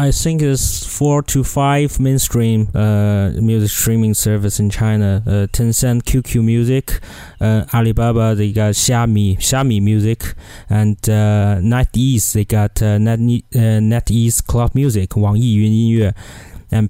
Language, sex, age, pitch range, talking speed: English, male, 20-39, 100-120 Hz, 140 wpm